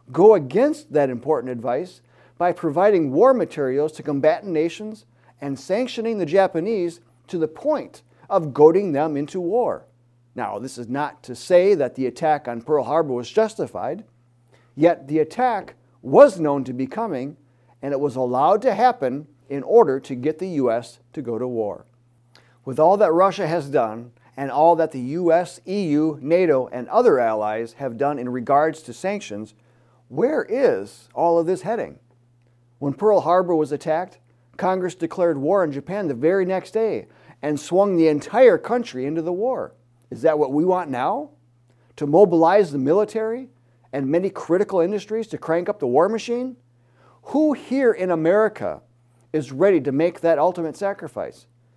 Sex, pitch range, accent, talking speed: male, 125-185 Hz, American, 165 wpm